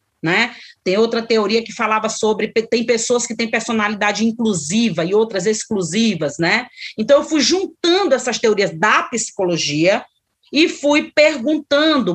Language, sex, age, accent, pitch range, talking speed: Portuguese, female, 30-49, Brazilian, 195-250 Hz, 140 wpm